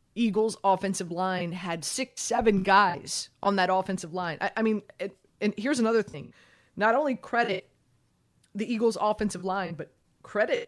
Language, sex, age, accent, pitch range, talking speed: English, female, 20-39, American, 175-215 Hz, 155 wpm